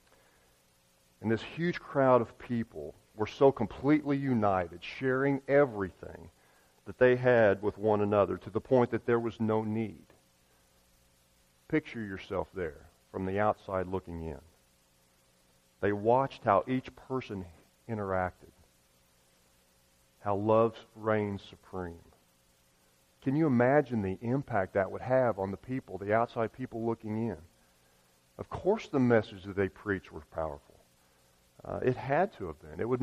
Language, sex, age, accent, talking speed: English, male, 40-59, American, 140 wpm